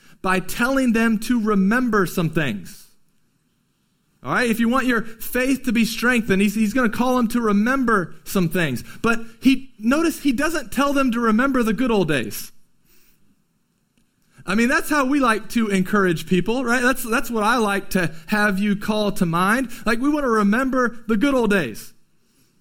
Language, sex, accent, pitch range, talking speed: English, male, American, 205-250 Hz, 185 wpm